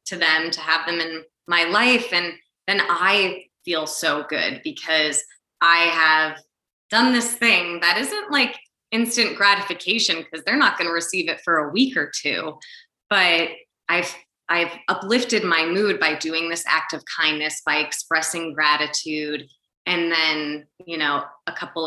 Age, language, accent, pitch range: 20-39, English, American, 160-205 Hz